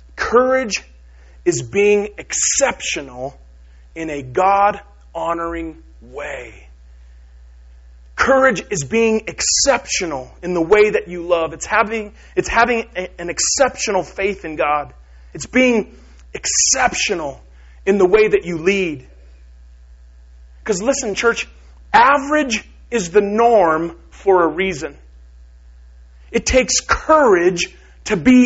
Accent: American